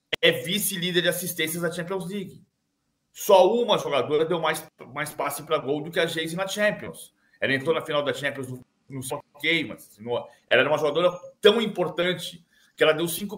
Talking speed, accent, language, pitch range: 190 wpm, Brazilian, Portuguese, 150-200 Hz